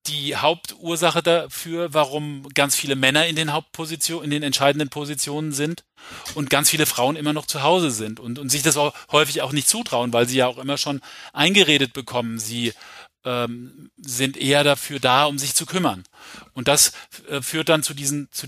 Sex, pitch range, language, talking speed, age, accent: male, 130-155 Hz, German, 190 wpm, 40-59, German